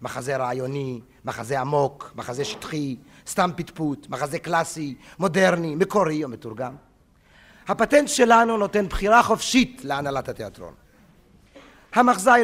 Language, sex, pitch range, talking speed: Hebrew, male, 130-195 Hz, 105 wpm